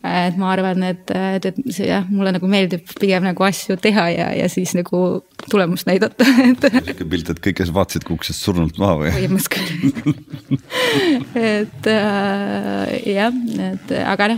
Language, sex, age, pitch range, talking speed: English, female, 20-39, 170-200 Hz, 110 wpm